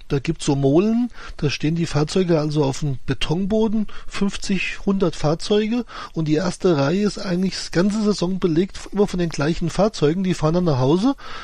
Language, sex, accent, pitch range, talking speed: German, male, German, 150-190 Hz, 185 wpm